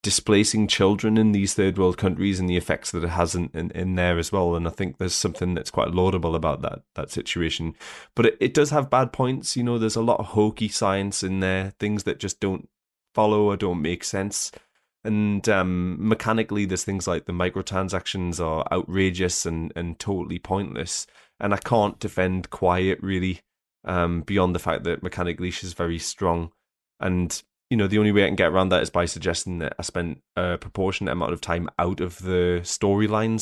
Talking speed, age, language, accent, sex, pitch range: 200 wpm, 20-39, English, British, male, 90-105 Hz